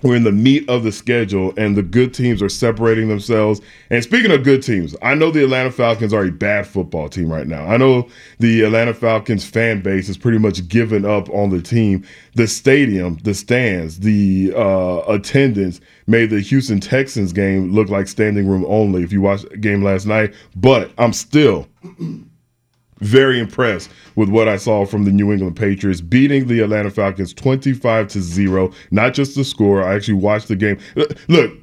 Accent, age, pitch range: American, 10-29, 100-125 Hz